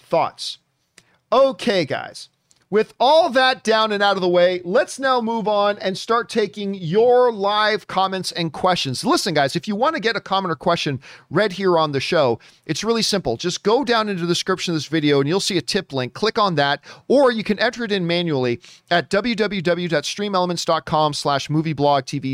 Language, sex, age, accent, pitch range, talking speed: English, male, 40-59, American, 145-205 Hz, 195 wpm